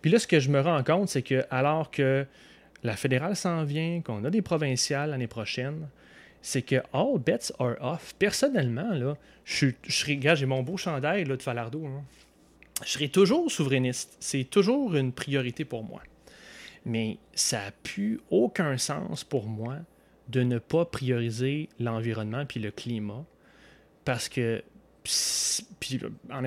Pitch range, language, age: 125-150 Hz, French, 30-49